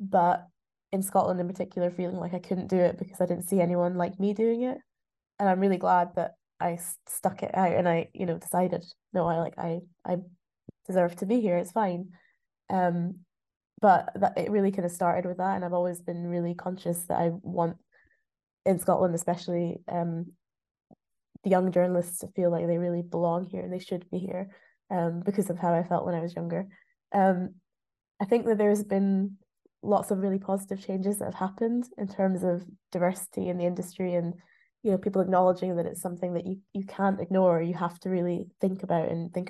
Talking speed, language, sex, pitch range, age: 205 wpm, English, female, 175-195 Hz, 20-39